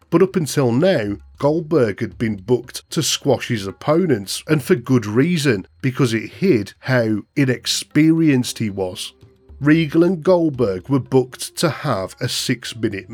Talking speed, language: 150 wpm, English